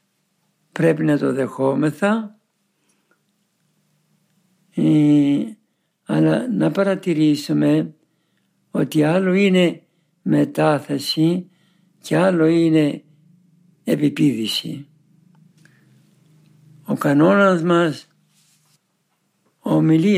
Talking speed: 55 wpm